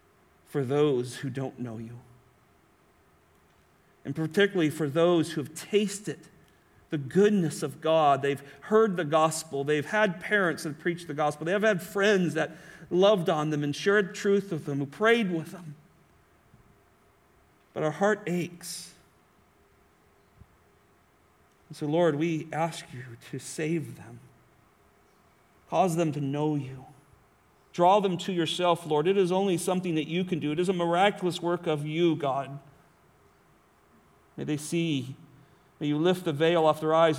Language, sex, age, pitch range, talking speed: English, male, 40-59, 135-170 Hz, 150 wpm